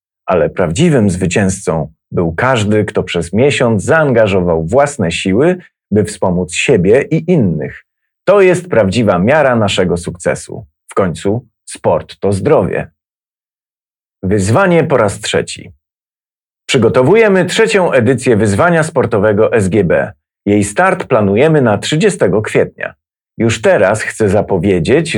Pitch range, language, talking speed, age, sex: 95-140 Hz, Polish, 110 wpm, 40-59, male